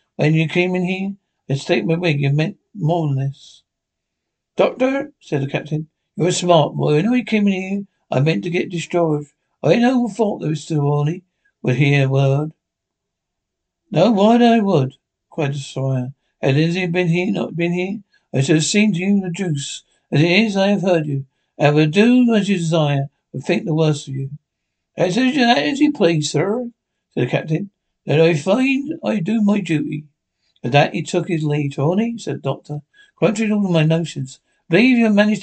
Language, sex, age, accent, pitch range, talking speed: English, male, 60-79, British, 145-195 Hz, 205 wpm